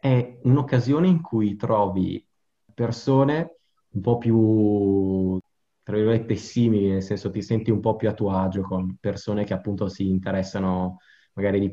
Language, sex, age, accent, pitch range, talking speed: Italian, male, 20-39, native, 95-115 Hz, 155 wpm